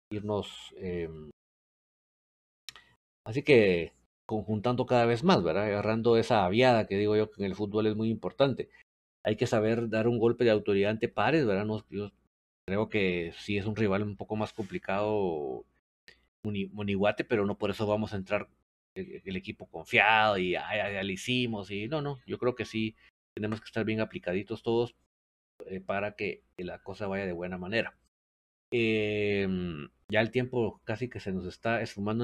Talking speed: 175 wpm